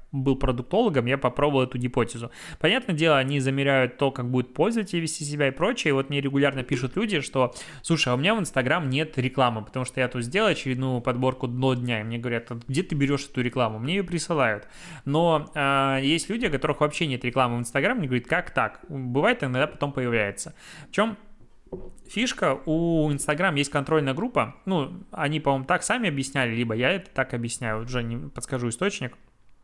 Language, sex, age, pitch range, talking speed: Russian, male, 20-39, 130-165 Hz, 195 wpm